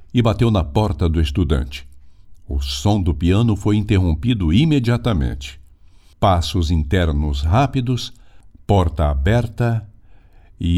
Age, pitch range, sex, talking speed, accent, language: 60-79, 85-115 Hz, male, 105 wpm, Brazilian, Portuguese